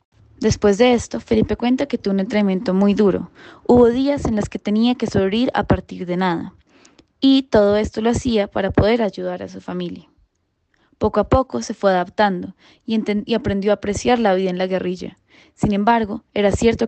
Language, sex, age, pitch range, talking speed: Hebrew, female, 10-29, 185-220 Hz, 190 wpm